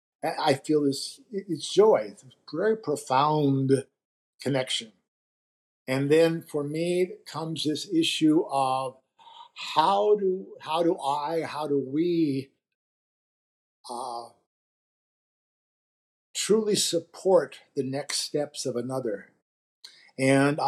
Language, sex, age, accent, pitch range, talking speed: English, male, 50-69, American, 135-165 Hz, 100 wpm